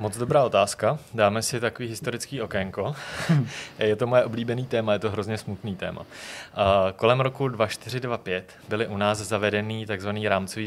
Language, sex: Czech, male